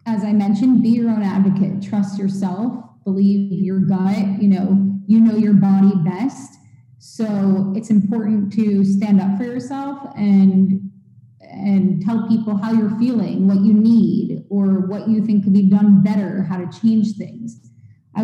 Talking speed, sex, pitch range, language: 165 wpm, female, 195-225 Hz, English